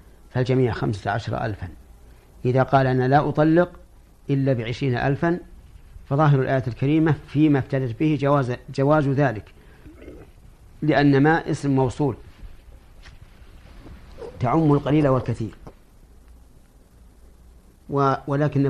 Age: 50-69